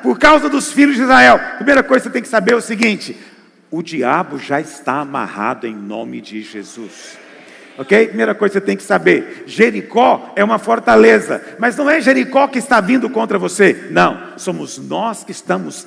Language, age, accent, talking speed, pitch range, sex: Portuguese, 50-69, Brazilian, 195 wpm, 205-295 Hz, male